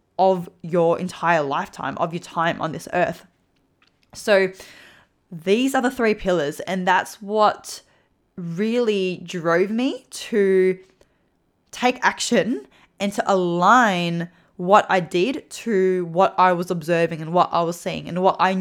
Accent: Australian